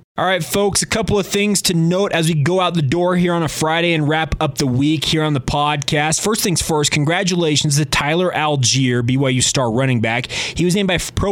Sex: male